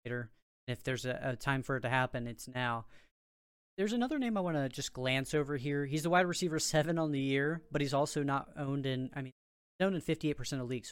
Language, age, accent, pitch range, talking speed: English, 30-49, American, 130-160 Hz, 235 wpm